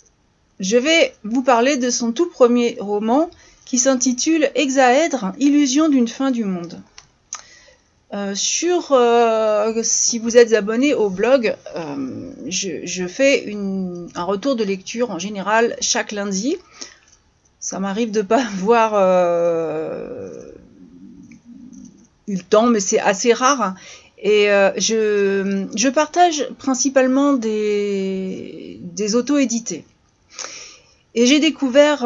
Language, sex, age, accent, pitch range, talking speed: French, female, 40-59, French, 200-260 Hz, 120 wpm